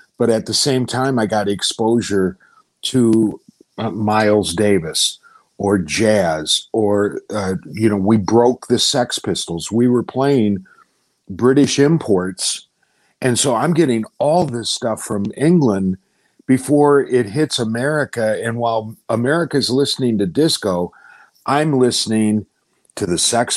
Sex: male